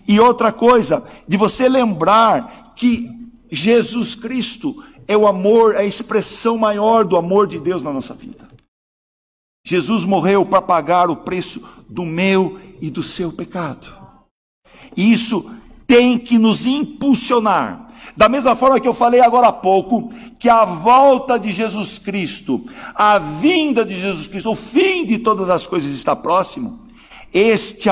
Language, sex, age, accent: Portuguese, male, 60-79, Brazilian